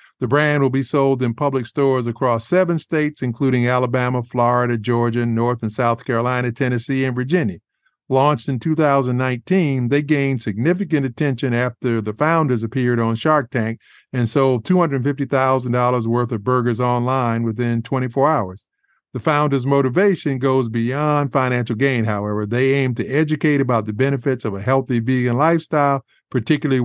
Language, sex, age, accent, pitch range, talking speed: English, male, 50-69, American, 120-145 Hz, 150 wpm